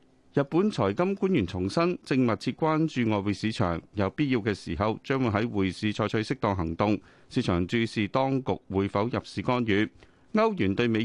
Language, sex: Chinese, male